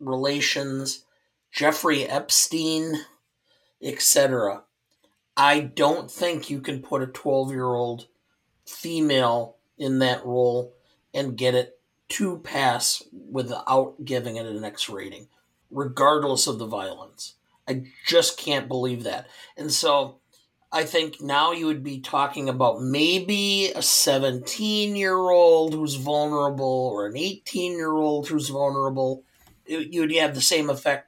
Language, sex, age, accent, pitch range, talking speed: English, male, 50-69, American, 130-155 Hz, 130 wpm